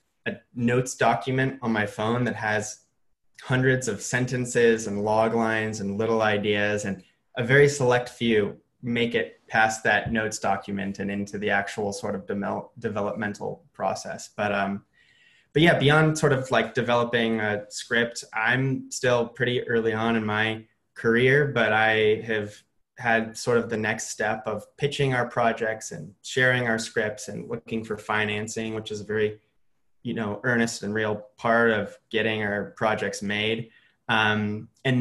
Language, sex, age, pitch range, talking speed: English, male, 20-39, 105-120 Hz, 160 wpm